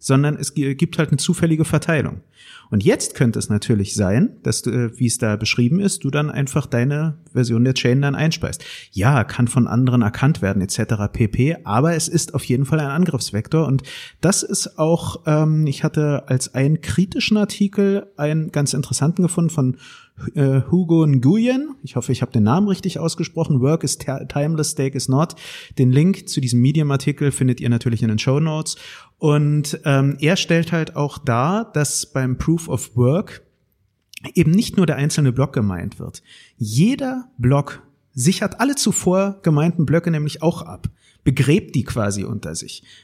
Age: 30-49